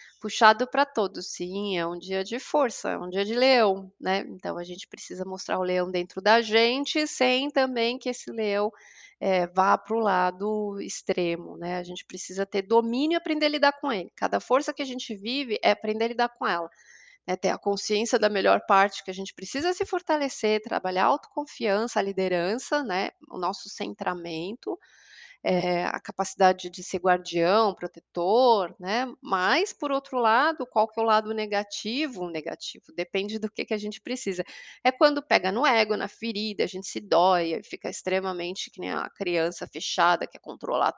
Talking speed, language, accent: 190 wpm, Portuguese, Brazilian